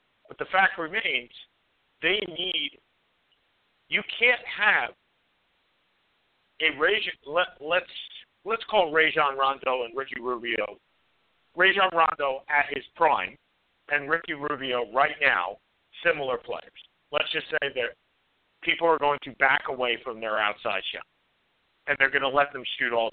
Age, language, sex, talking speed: 50-69, English, male, 140 wpm